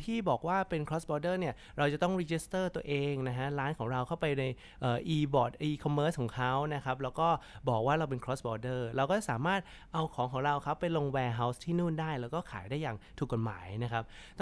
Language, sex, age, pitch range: Thai, male, 20-39, 125-170 Hz